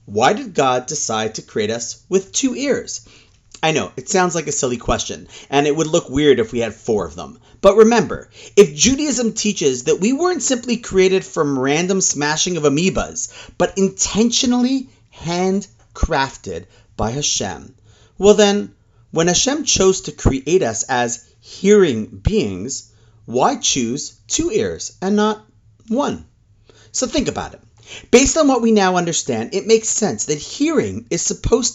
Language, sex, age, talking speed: English, male, 30-49, 160 wpm